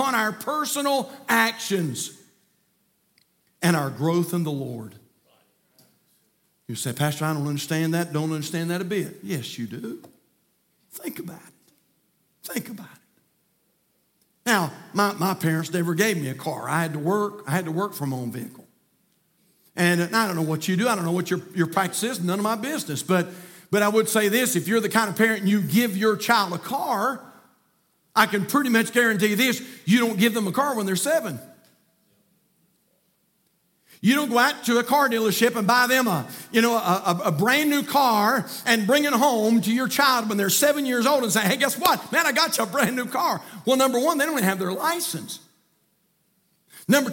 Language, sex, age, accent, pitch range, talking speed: English, male, 50-69, American, 180-250 Hz, 200 wpm